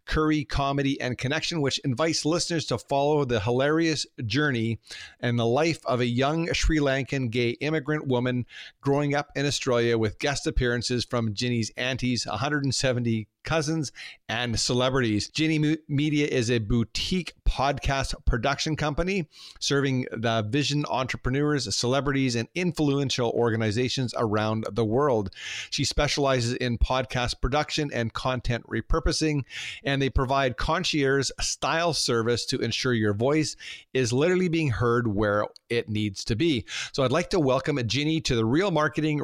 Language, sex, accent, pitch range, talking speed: English, male, American, 120-145 Hz, 145 wpm